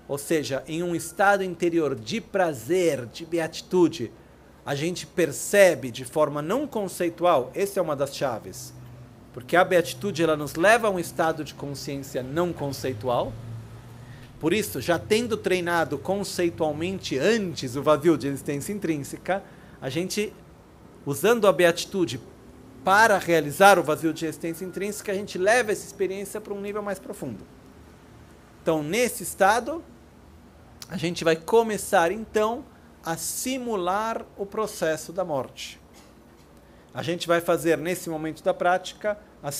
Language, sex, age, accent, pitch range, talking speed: Italian, male, 40-59, Brazilian, 140-200 Hz, 140 wpm